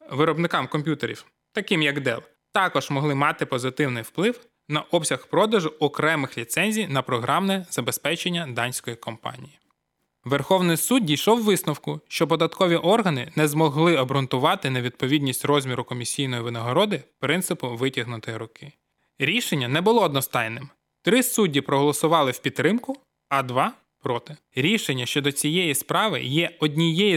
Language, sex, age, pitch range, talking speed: Ukrainian, male, 20-39, 140-185 Hz, 125 wpm